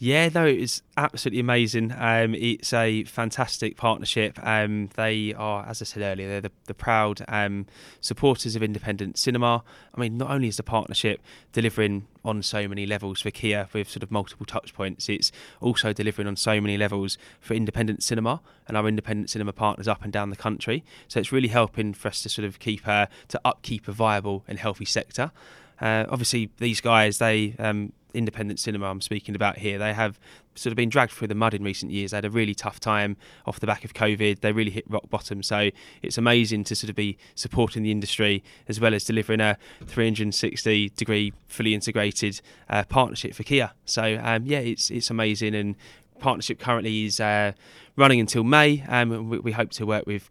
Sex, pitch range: male, 105-115 Hz